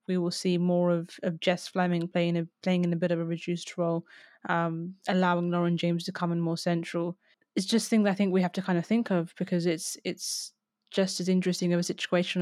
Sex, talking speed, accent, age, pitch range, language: female, 225 wpm, British, 20-39, 175-195 Hz, English